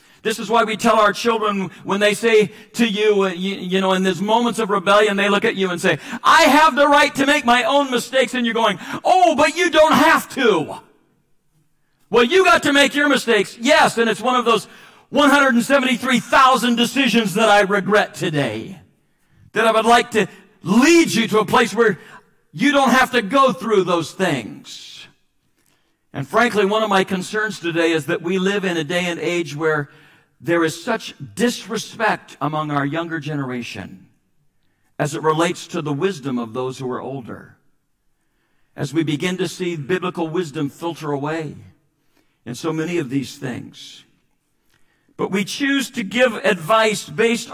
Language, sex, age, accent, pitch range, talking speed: English, male, 50-69, American, 165-230 Hz, 175 wpm